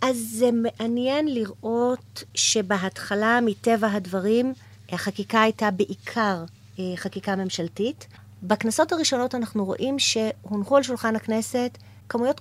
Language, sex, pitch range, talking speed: Hebrew, female, 190-240 Hz, 100 wpm